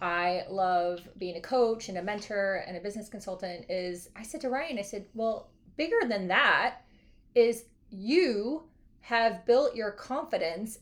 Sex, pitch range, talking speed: female, 205-255 Hz, 160 wpm